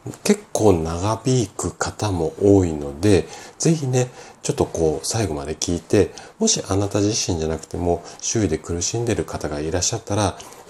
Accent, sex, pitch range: native, male, 80-115 Hz